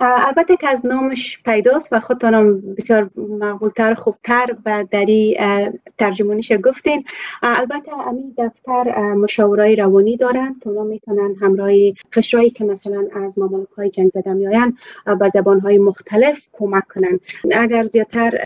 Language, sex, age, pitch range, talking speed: Persian, female, 30-49, 200-230 Hz, 130 wpm